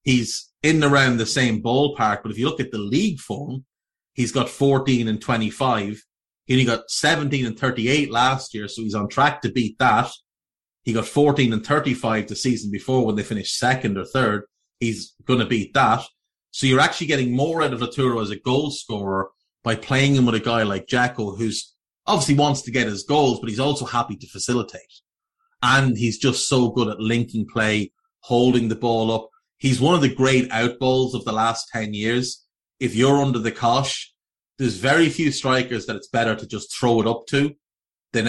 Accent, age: Irish, 30-49